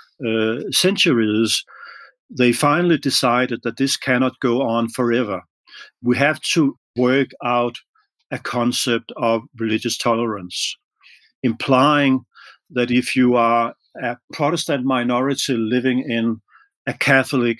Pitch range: 115-140 Hz